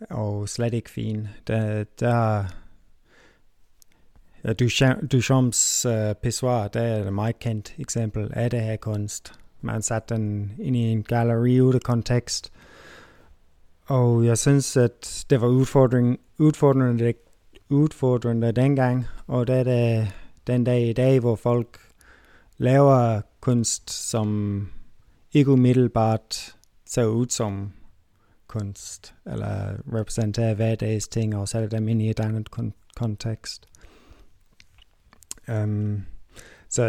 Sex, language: male, Danish